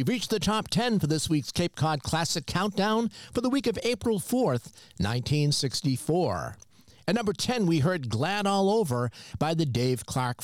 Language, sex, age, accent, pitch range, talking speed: English, male, 50-69, American, 125-190 Hz, 180 wpm